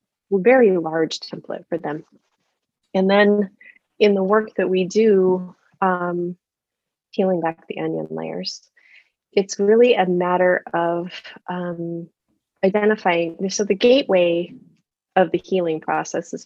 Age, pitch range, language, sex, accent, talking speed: 30-49, 170-205 Hz, English, female, American, 125 wpm